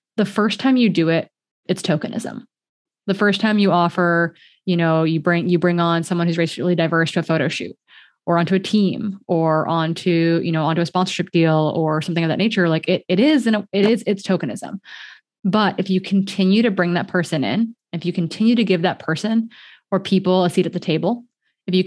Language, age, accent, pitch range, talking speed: English, 20-39, American, 170-200 Hz, 220 wpm